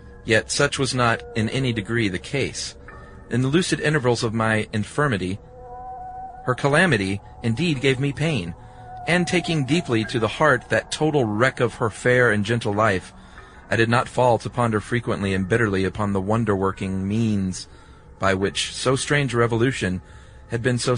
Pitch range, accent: 100-145 Hz, American